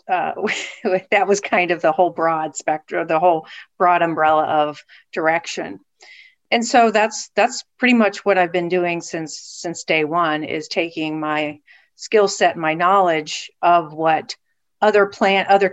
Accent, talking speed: American, 155 wpm